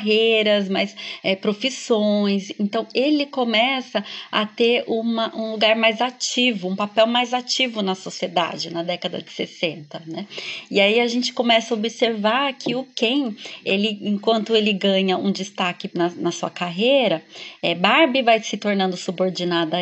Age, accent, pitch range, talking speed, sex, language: 20-39, Brazilian, 190-235 Hz, 155 wpm, female, Portuguese